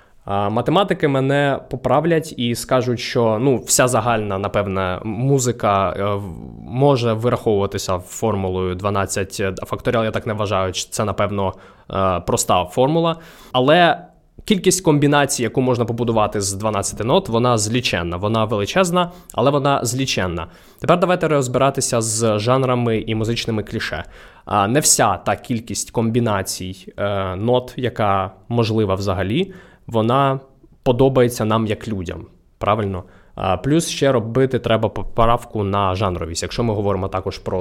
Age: 20-39